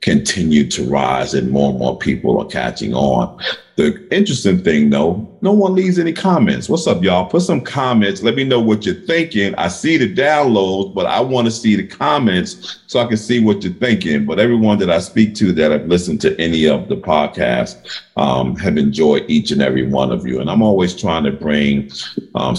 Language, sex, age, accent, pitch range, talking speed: English, male, 50-69, American, 80-110 Hz, 215 wpm